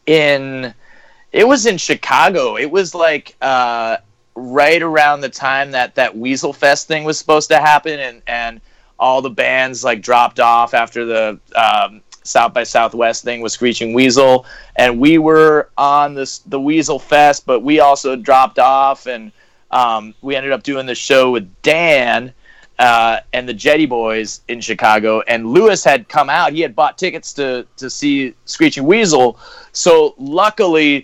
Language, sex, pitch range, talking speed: English, male, 120-150 Hz, 165 wpm